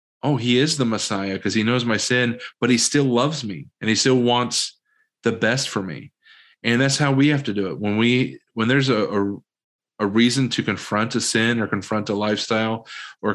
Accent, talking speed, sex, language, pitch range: American, 215 wpm, male, English, 105-130 Hz